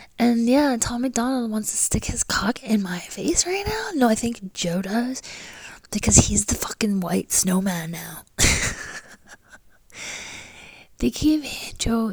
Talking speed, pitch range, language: 145 wpm, 180-205 Hz, English